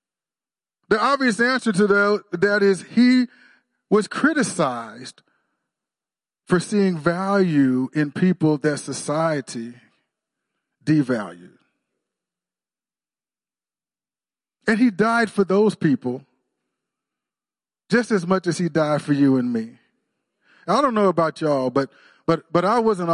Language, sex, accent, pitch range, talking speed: English, male, American, 145-205 Hz, 110 wpm